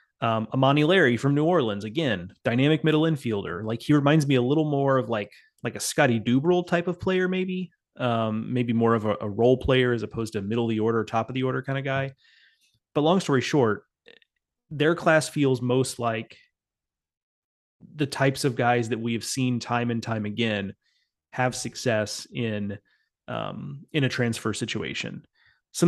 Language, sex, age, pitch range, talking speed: English, male, 30-49, 115-135 Hz, 180 wpm